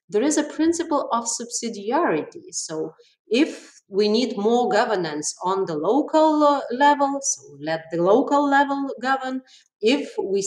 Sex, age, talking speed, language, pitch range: female, 30-49, 140 wpm, Hebrew, 175-260 Hz